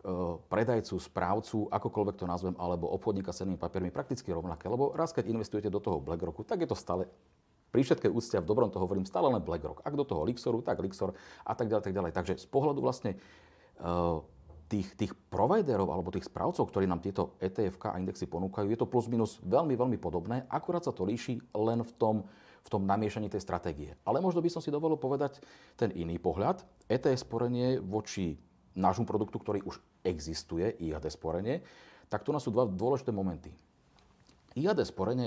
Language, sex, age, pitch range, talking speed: Slovak, male, 40-59, 85-110 Hz, 180 wpm